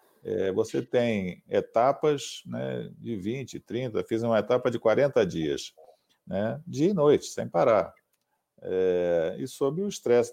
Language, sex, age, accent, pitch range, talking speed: Portuguese, male, 50-69, Brazilian, 100-160 Hz, 140 wpm